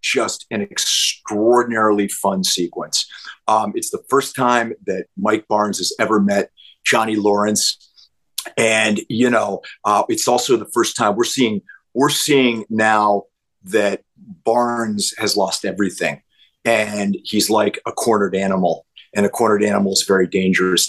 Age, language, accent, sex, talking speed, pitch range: 40-59, English, American, male, 145 wpm, 105-140 Hz